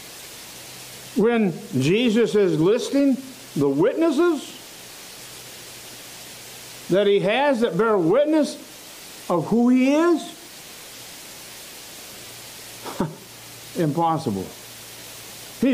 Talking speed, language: 70 wpm, English